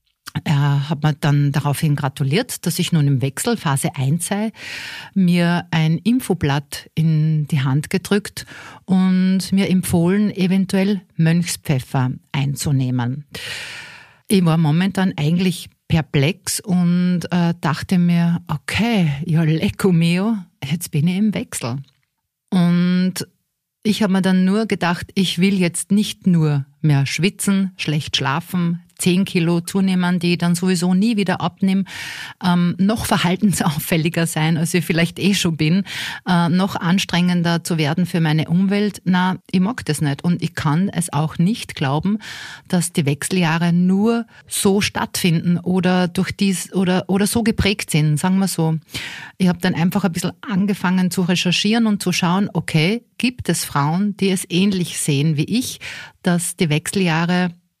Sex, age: female, 50-69